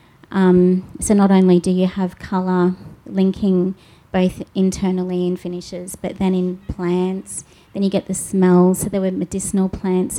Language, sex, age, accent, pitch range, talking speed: English, female, 30-49, Australian, 180-200 Hz, 160 wpm